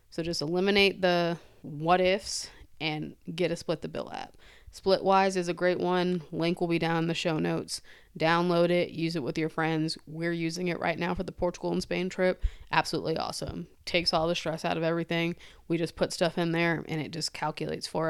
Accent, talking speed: American, 210 wpm